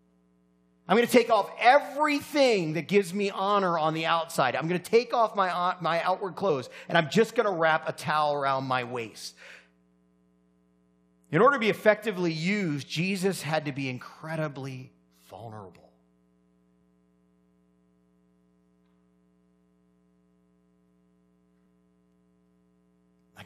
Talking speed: 120 wpm